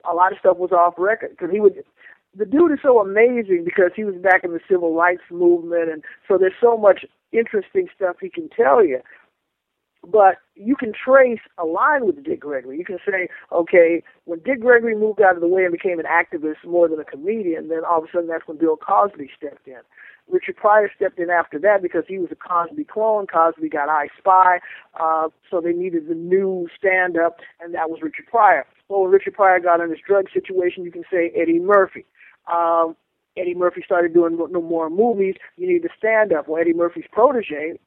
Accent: American